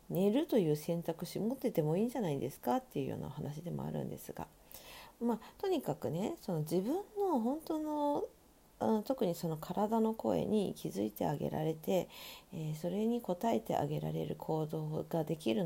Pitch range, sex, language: 155-240 Hz, female, Japanese